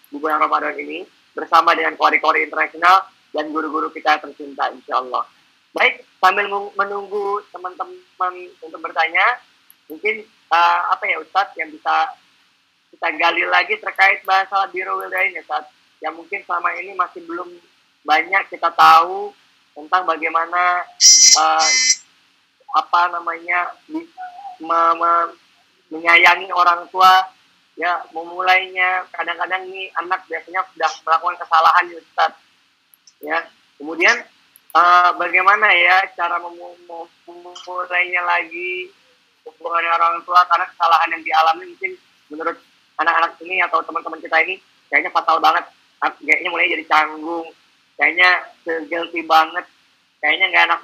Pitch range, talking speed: 165-185 Hz, 115 wpm